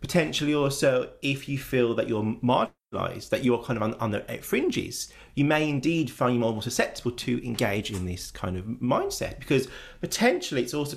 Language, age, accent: English, 30-49, British